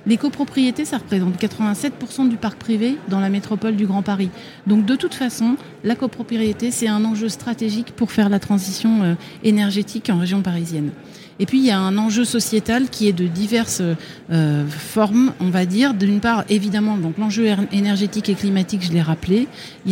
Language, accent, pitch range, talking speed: French, French, 185-230 Hz, 180 wpm